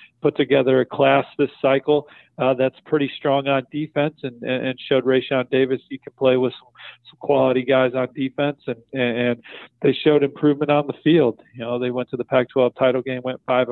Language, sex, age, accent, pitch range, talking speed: English, male, 40-59, American, 125-145 Hz, 205 wpm